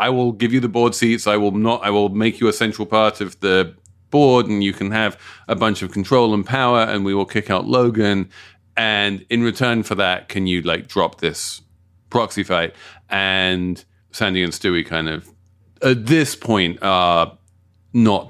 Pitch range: 90-110 Hz